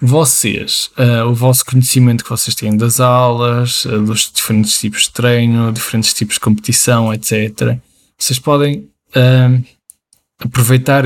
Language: Portuguese